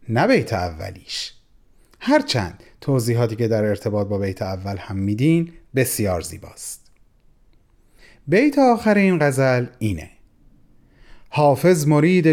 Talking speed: 105 wpm